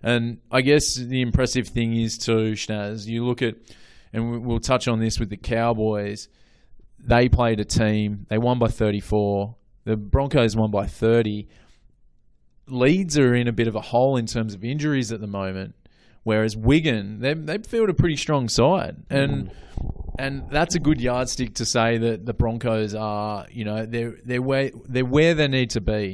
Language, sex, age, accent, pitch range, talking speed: English, male, 20-39, Australian, 110-125 Hz, 180 wpm